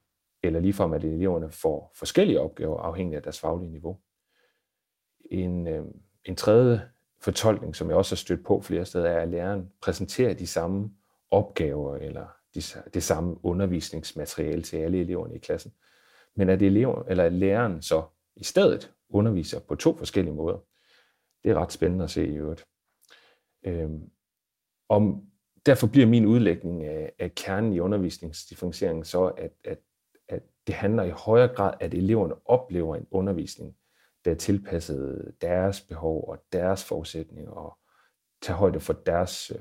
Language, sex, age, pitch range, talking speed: Danish, male, 40-59, 80-100 Hz, 155 wpm